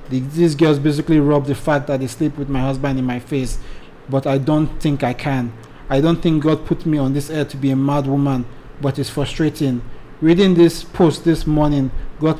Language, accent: English, Nigerian